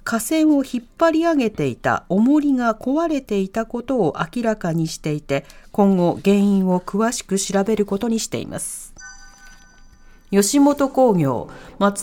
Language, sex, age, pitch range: Japanese, female, 40-59, 180-280 Hz